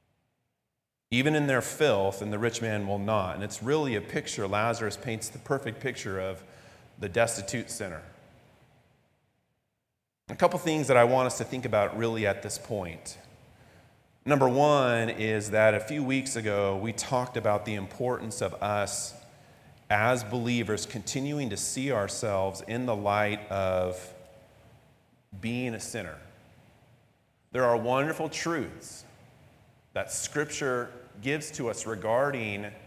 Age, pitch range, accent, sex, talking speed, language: 40-59, 110-140 Hz, American, male, 140 wpm, English